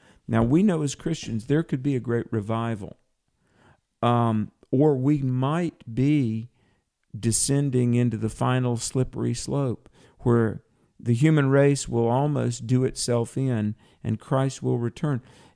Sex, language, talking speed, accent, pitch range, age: male, English, 135 wpm, American, 115-145 Hz, 50-69